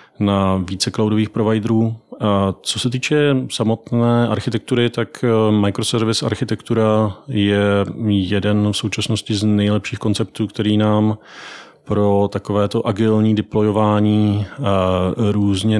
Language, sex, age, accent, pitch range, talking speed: Czech, male, 30-49, native, 105-115 Hz, 100 wpm